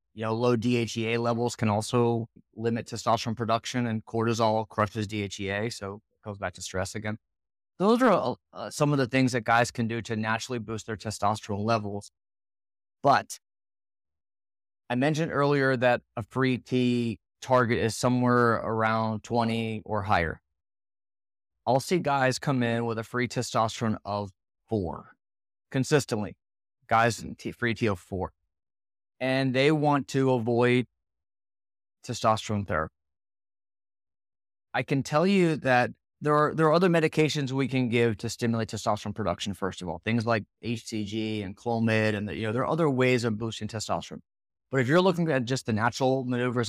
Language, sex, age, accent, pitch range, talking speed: English, male, 20-39, American, 100-125 Hz, 160 wpm